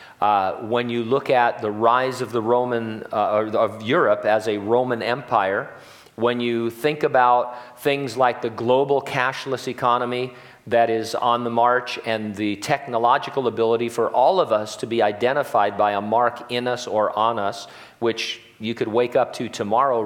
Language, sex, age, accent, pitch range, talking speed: English, male, 40-59, American, 110-125 Hz, 175 wpm